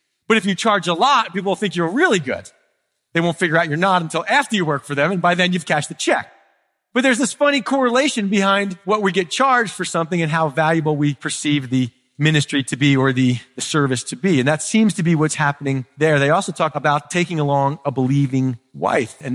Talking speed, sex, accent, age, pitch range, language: 235 wpm, male, American, 40-59, 150-235 Hz, English